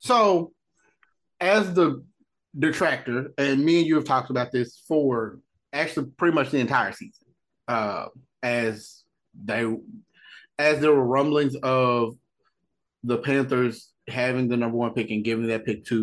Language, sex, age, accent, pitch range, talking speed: English, male, 30-49, American, 115-150 Hz, 145 wpm